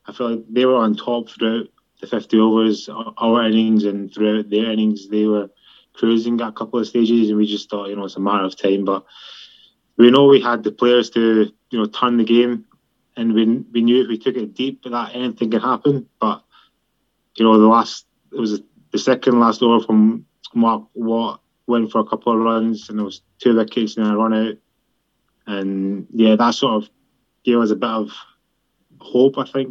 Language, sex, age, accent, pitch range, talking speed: English, male, 20-39, British, 110-125 Hz, 215 wpm